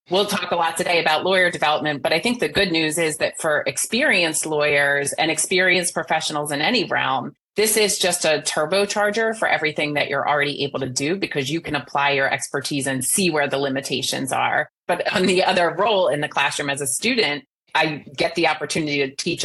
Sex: female